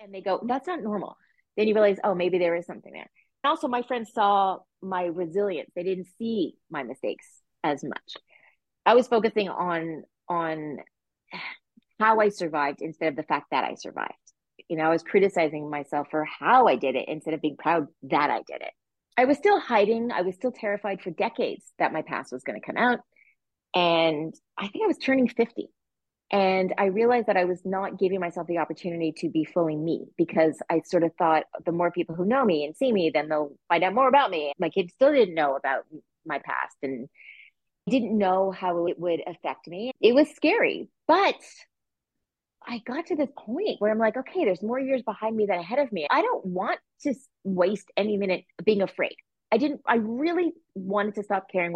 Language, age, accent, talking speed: English, 30-49, American, 205 wpm